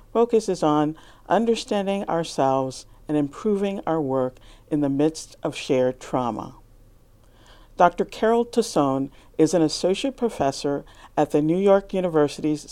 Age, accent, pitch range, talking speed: 50-69, American, 130-180 Hz, 125 wpm